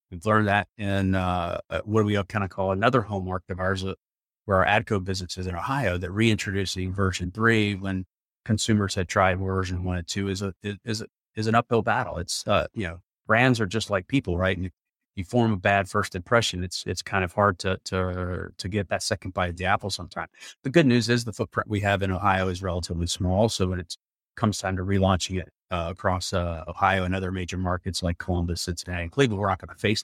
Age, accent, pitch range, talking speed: 30-49, American, 90-105 Hz, 235 wpm